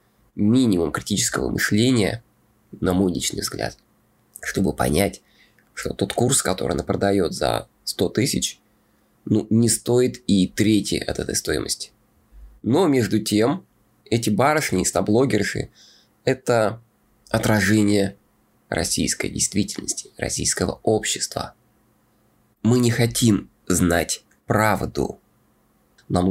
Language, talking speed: Russian, 105 wpm